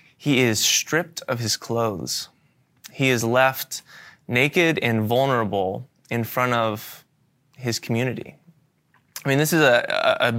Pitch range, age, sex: 115-150 Hz, 20-39, male